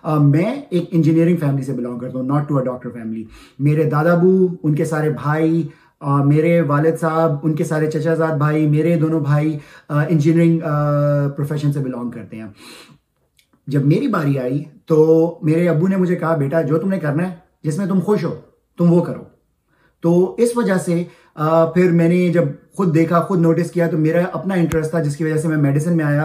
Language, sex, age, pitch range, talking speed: Urdu, male, 30-49, 150-180 Hz, 200 wpm